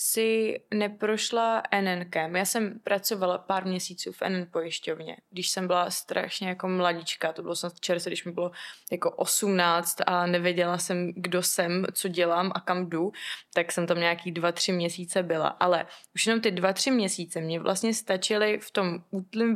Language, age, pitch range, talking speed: Czech, 20-39, 180-205 Hz, 170 wpm